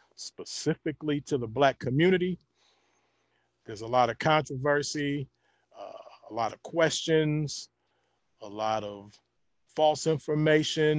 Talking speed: 110 wpm